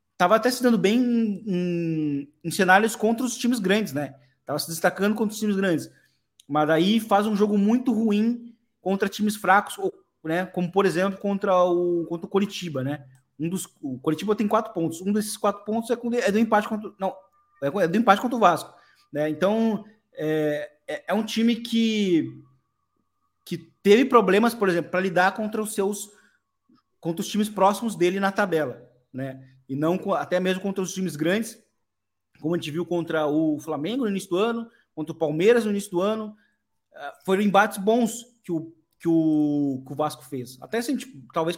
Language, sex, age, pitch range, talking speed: Portuguese, male, 20-39, 155-215 Hz, 185 wpm